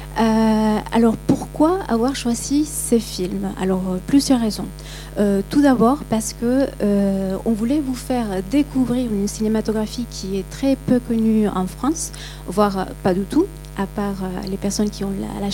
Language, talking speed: French, 160 wpm